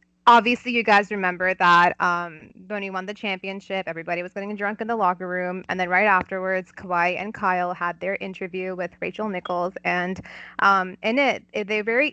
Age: 20-39